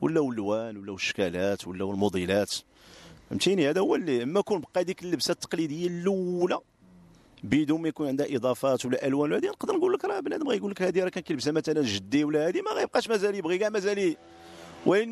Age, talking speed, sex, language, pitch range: 40-59, 185 wpm, male, English, 125-210 Hz